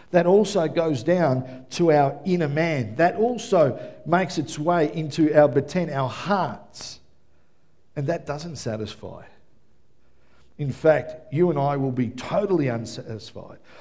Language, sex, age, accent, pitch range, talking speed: English, male, 50-69, Australian, 125-175 Hz, 135 wpm